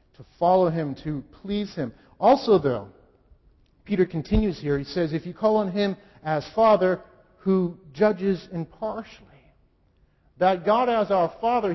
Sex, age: male, 50-69